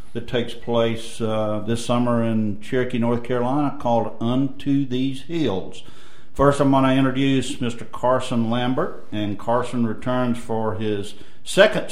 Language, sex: English, male